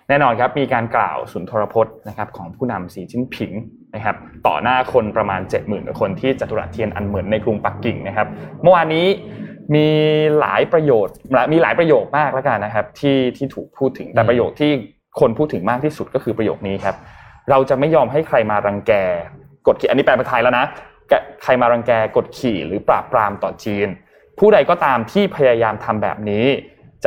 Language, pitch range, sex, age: Thai, 105-150 Hz, male, 20-39